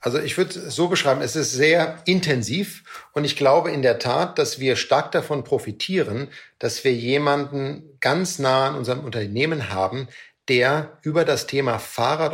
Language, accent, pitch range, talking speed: German, German, 125-155 Hz, 170 wpm